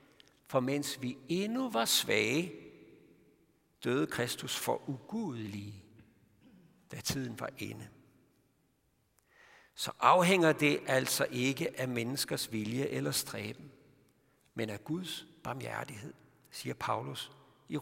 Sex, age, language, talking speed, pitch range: male, 60-79, Danish, 105 wpm, 120-160 Hz